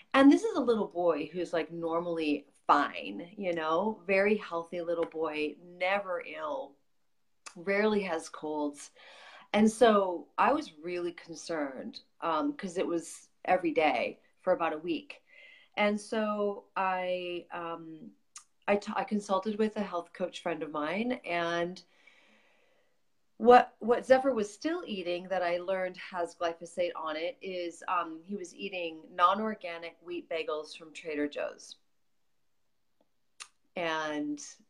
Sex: female